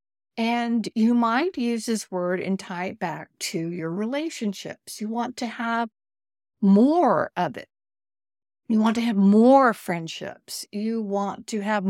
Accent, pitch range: American, 185-245 Hz